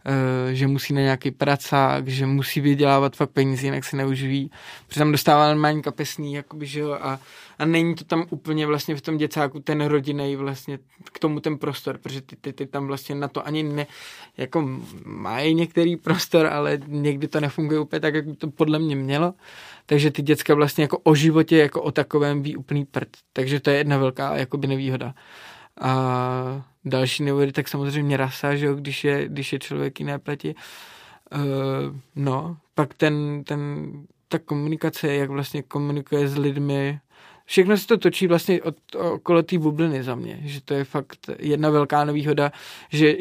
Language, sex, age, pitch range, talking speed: Czech, male, 20-39, 140-155 Hz, 175 wpm